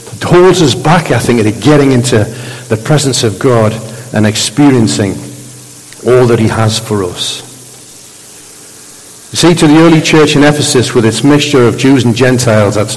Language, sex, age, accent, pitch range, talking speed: English, male, 50-69, British, 115-145 Hz, 160 wpm